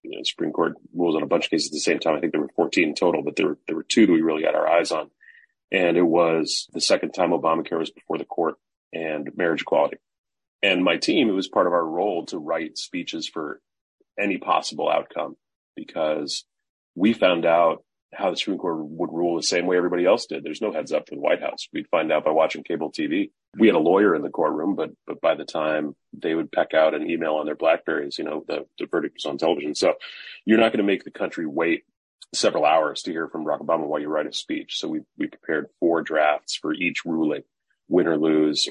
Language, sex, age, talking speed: English, male, 30-49, 240 wpm